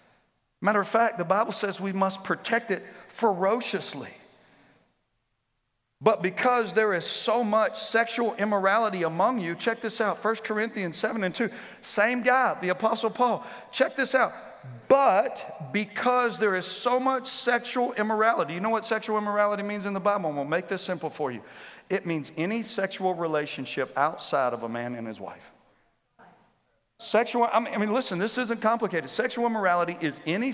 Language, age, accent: English, 50-69, American